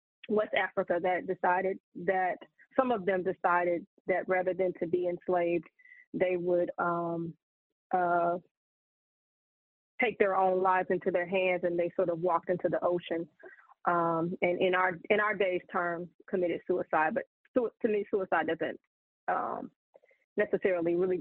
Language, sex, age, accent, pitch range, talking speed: English, female, 20-39, American, 175-195 Hz, 145 wpm